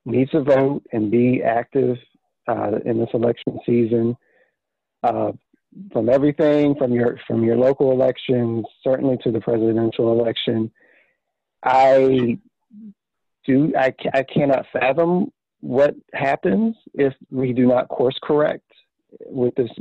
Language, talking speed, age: English, 125 wpm, 40-59